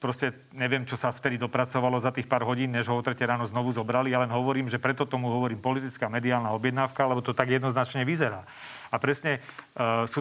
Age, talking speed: 40-59, 210 wpm